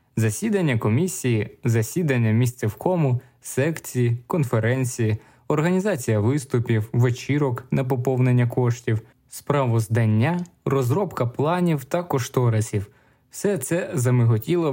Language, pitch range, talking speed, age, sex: Ukrainian, 110-145 Hz, 85 wpm, 20-39, male